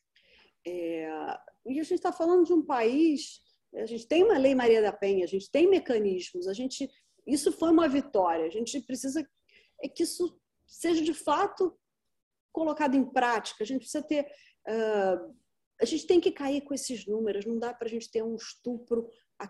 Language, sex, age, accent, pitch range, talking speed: Portuguese, female, 40-59, Brazilian, 210-280 Hz, 170 wpm